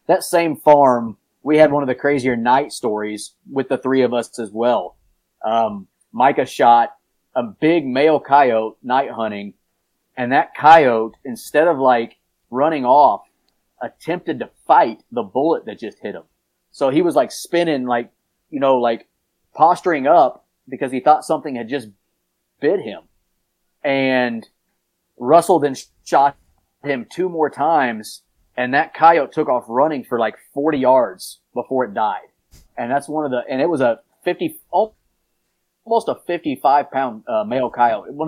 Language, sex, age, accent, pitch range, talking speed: English, male, 30-49, American, 115-155 Hz, 160 wpm